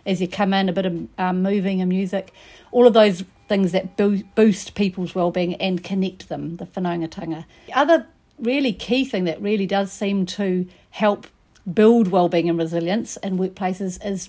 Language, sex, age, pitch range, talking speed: English, female, 50-69, 185-215 Hz, 180 wpm